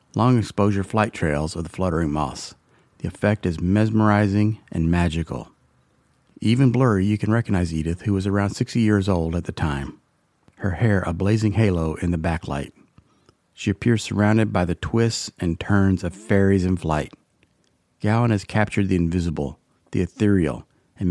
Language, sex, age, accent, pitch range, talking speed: English, male, 40-59, American, 90-110 Hz, 160 wpm